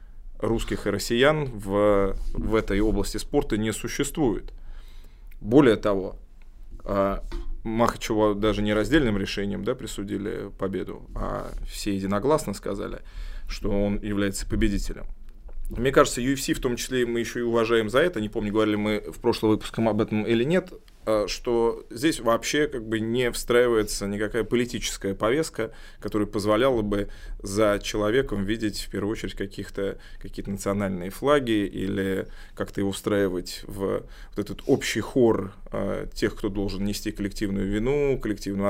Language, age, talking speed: Russian, 20-39, 140 wpm